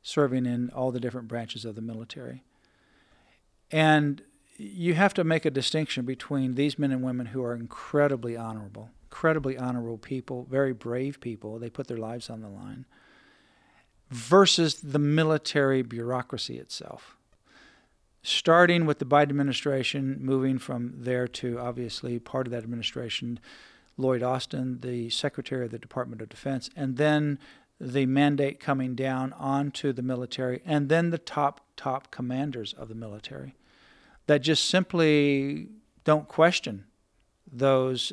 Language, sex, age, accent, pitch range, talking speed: English, male, 50-69, American, 120-150 Hz, 140 wpm